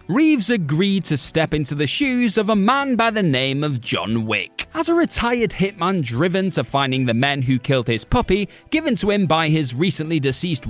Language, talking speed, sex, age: English, 200 wpm, male, 30-49